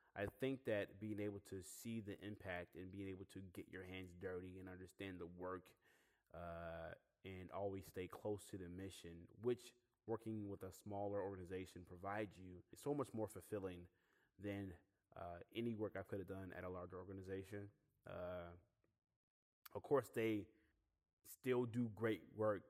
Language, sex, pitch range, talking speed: English, male, 90-105 Hz, 165 wpm